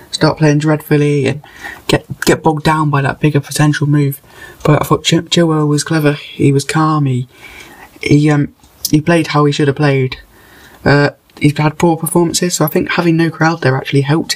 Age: 10-29